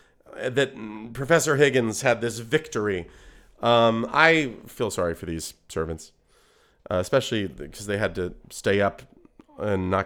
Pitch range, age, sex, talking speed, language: 110-180 Hz, 30-49, male, 135 wpm, English